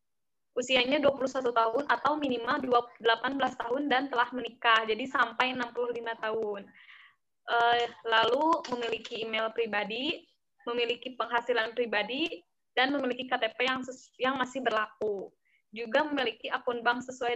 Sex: female